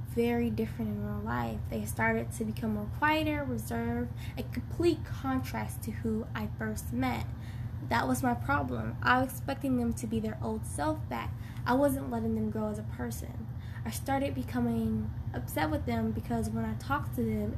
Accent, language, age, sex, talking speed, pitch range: American, English, 10-29, female, 185 wpm, 110-120 Hz